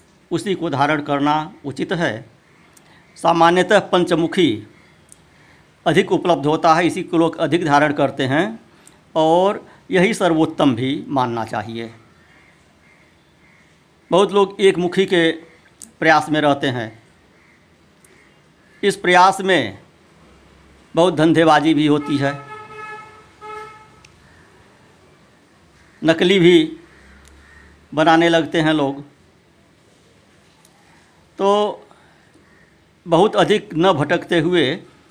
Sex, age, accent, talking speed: male, 60-79, native, 90 wpm